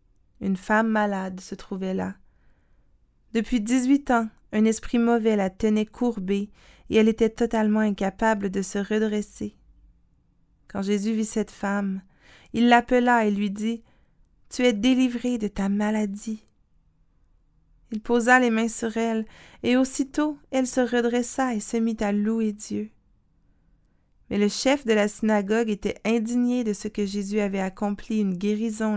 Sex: female